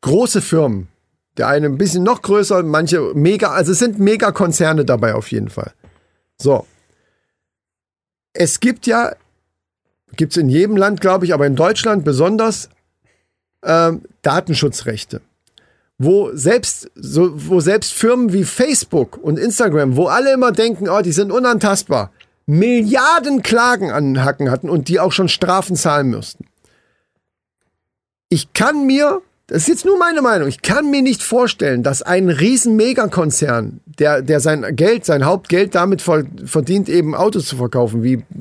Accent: German